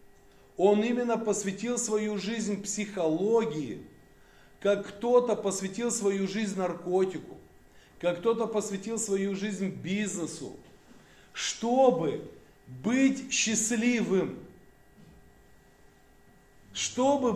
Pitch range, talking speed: 175-230 Hz, 75 wpm